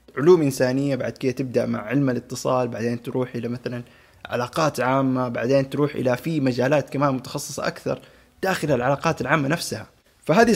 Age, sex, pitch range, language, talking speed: 20-39, male, 125-155 Hz, Arabic, 155 wpm